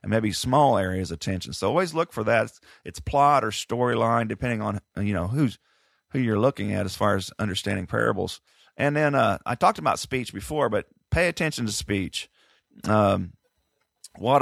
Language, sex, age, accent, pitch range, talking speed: English, male, 40-59, American, 95-115 Hz, 185 wpm